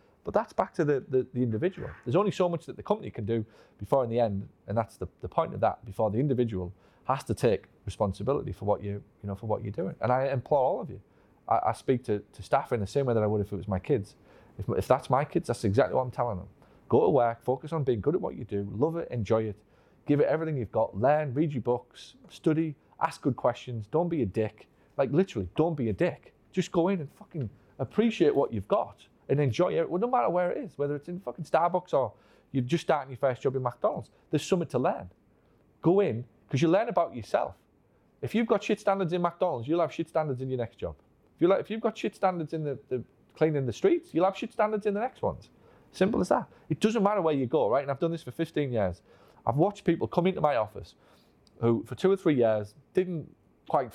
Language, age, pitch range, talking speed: English, 30-49, 115-170 Hz, 255 wpm